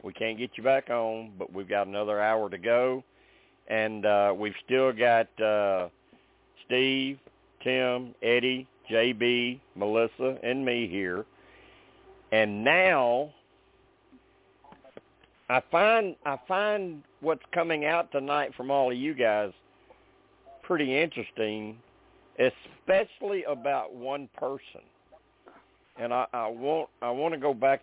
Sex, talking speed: male, 125 wpm